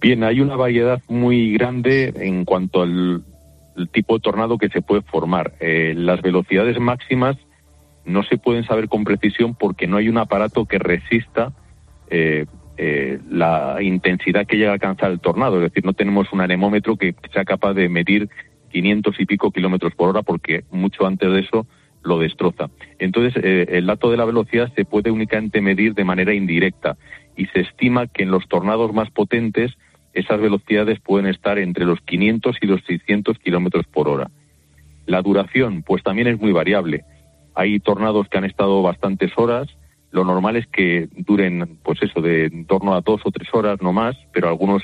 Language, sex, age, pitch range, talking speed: Spanish, male, 40-59, 90-110 Hz, 180 wpm